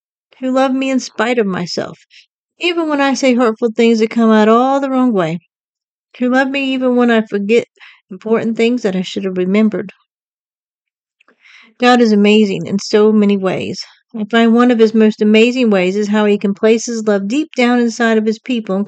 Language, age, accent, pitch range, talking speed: English, 40-59, American, 205-245 Hz, 200 wpm